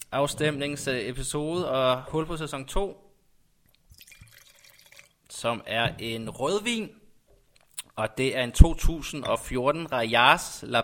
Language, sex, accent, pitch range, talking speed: Danish, male, native, 120-150 Hz, 95 wpm